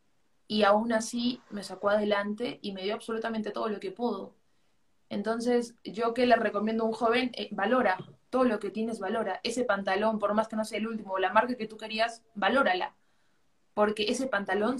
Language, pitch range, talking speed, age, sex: Spanish, 205-240 Hz, 195 wpm, 20-39, female